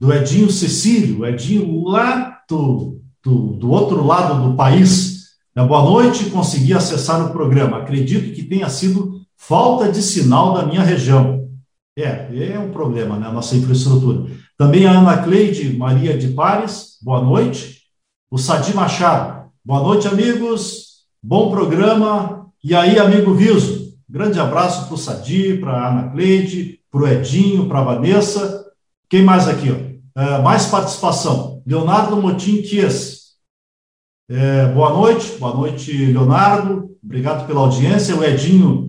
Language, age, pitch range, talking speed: Portuguese, 50-69, 135-195 Hz, 140 wpm